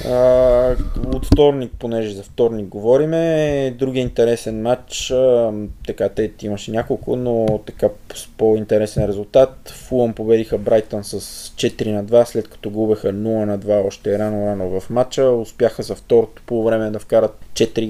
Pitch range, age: 105-125 Hz, 20-39